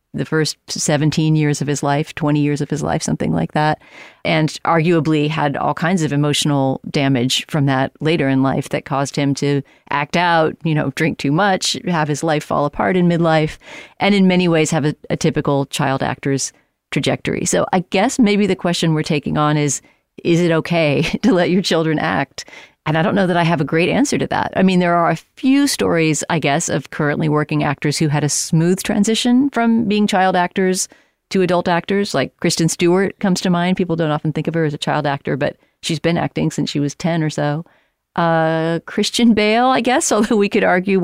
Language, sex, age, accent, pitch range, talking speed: English, female, 40-59, American, 150-180 Hz, 215 wpm